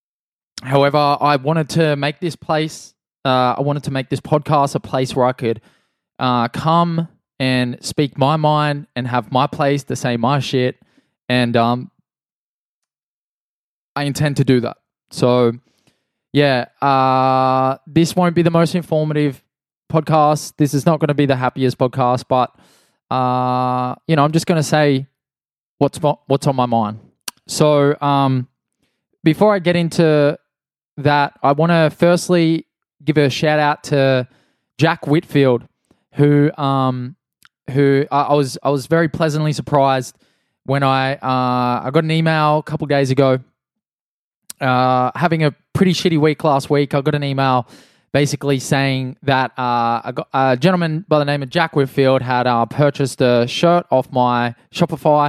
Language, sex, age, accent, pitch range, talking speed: English, male, 20-39, Australian, 130-155 Hz, 160 wpm